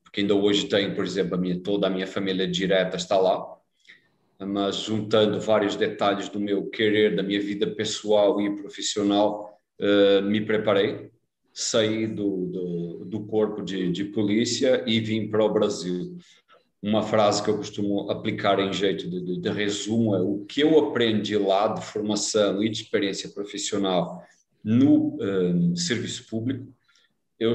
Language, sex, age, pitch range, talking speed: Portuguese, male, 40-59, 100-110 Hz, 160 wpm